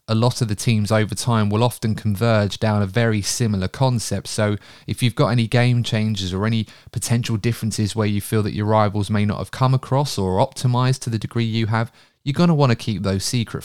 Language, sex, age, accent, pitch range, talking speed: English, male, 20-39, British, 105-130 Hz, 230 wpm